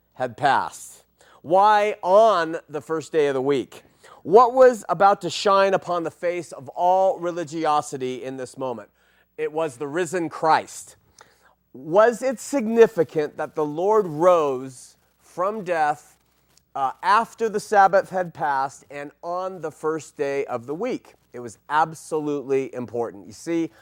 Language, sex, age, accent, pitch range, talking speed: English, male, 30-49, American, 150-205 Hz, 145 wpm